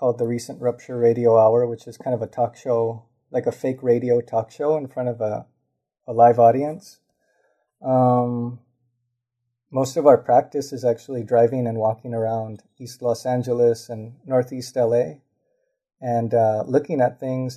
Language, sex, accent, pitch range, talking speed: English, male, American, 115-130 Hz, 165 wpm